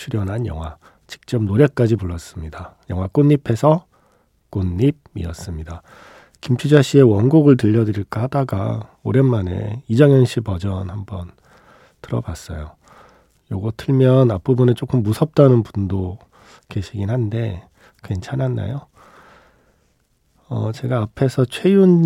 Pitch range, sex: 100-135 Hz, male